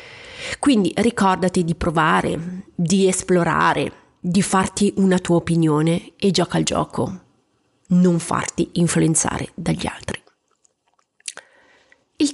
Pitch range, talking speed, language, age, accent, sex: 180-265 Hz, 100 wpm, Italian, 30-49, native, female